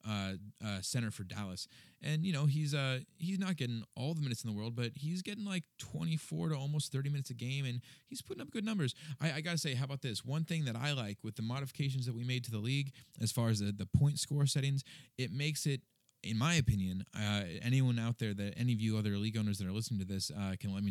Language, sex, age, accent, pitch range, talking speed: English, male, 30-49, American, 110-145 Hz, 260 wpm